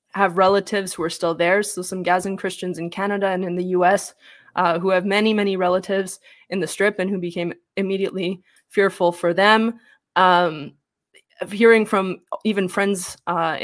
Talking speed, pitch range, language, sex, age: 165 wpm, 180-210 Hz, English, female, 20-39